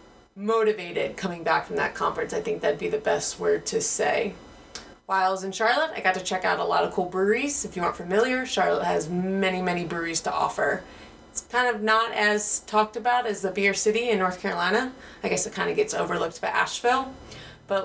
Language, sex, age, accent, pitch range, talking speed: English, female, 30-49, American, 185-225 Hz, 220 wpm